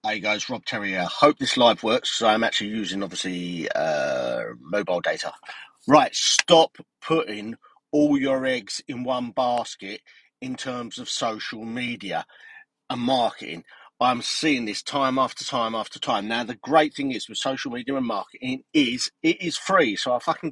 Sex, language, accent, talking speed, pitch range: male, English, British, 175 wpm, 115-165 Hz